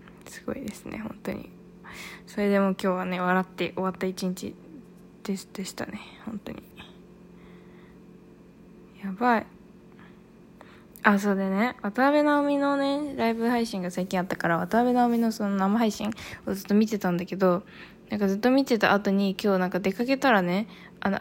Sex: female